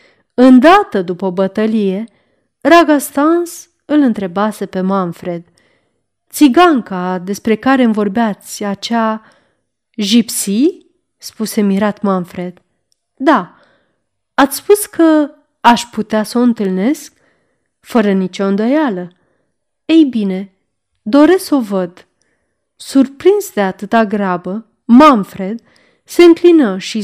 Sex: female